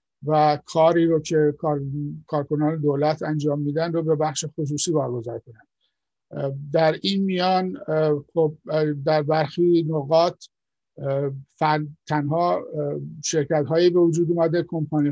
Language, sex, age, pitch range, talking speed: English, male, 50-69, 150-170 Hz, 120 wpm